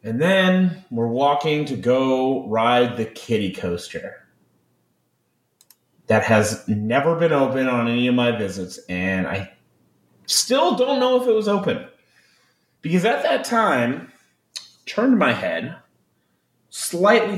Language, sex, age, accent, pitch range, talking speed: English, male, 30-49, American, 120-190 Hz, 130 wpm